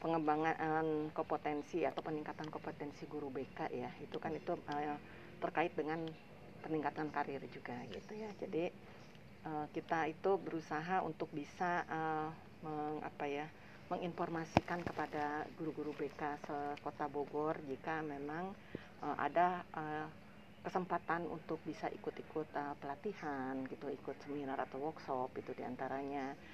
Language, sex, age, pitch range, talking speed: Malay, female, 40-59, 150-175 Hz, 120 wpm